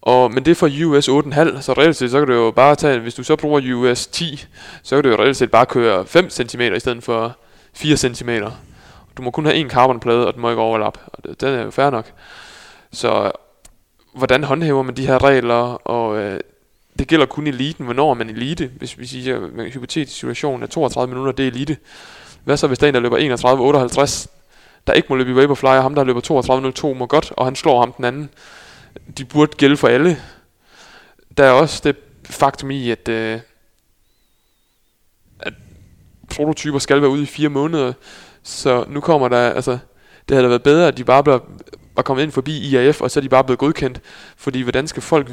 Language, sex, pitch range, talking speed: Danish, male, 125-145 Hz, 210 wpm